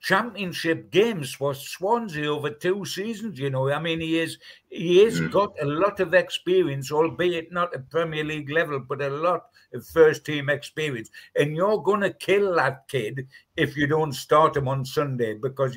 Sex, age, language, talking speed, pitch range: male, 60-79, English, 180 wpm, 135-185 Hz